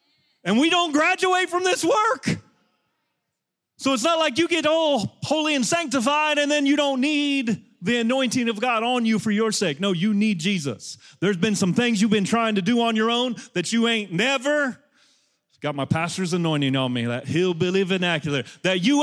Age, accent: 30-49, American